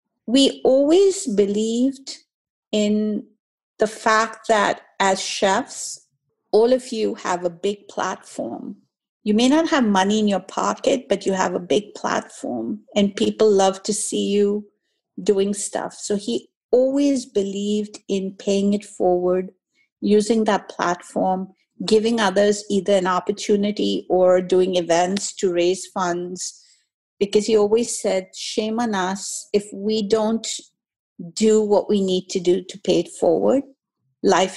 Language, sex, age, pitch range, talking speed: English, female, 50-69, 190-225 Hz, 140 wpm